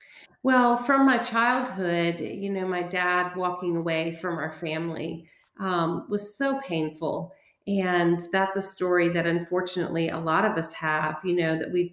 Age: 40-59